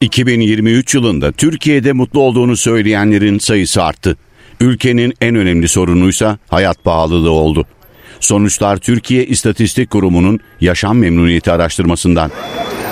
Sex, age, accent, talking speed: male, 60-79, native, 100 wpm